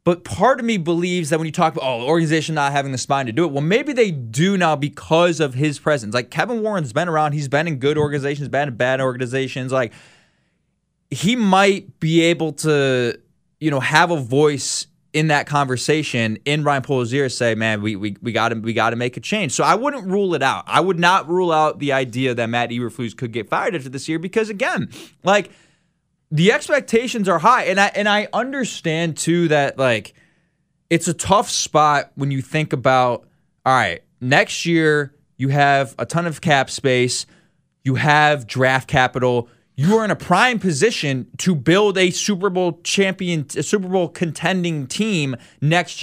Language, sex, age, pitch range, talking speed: English, male, 20-39, 135-180 Hz, 195 wpm